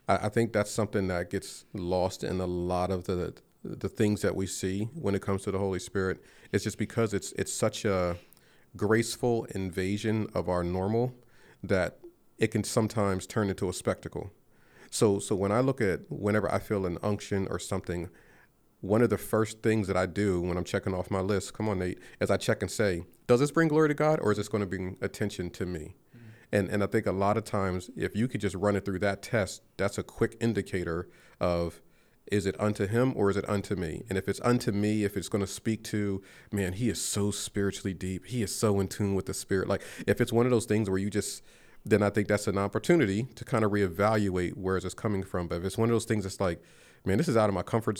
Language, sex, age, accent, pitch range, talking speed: English, male, 40-59, American, 95-110 Hz, 240 wpm